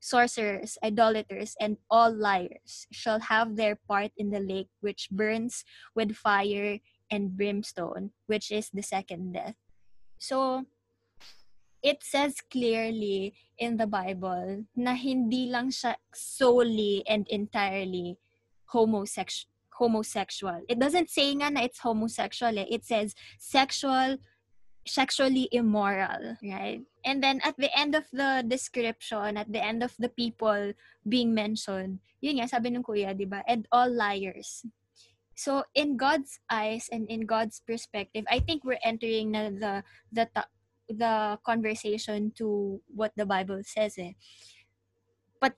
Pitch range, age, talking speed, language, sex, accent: 205-245 Hz, 20-39, 130 wpm, English, female, Filipino